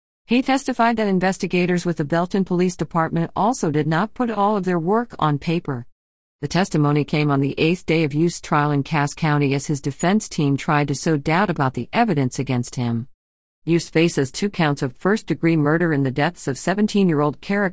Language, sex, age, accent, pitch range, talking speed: English, female, 50-69, American, 145-185 Hz, 205 wpm